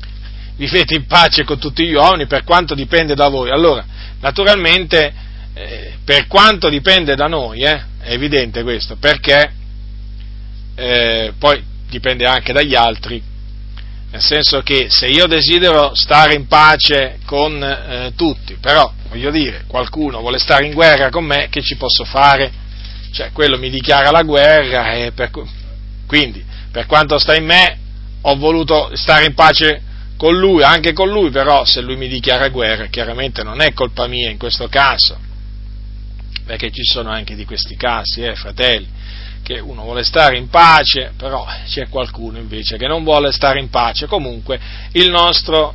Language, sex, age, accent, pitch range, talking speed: Italian, male, 40-59, native, 100-145 Hz, 160 wpm